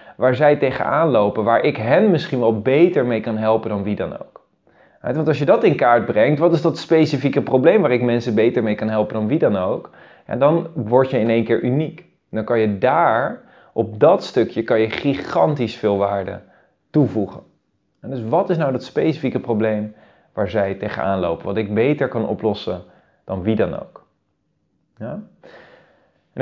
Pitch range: 115-155 Hz